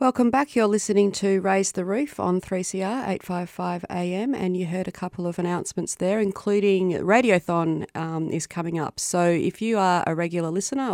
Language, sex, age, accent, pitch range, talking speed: English, female, 30-49, Australian, 160-195 Hz, 180 wpm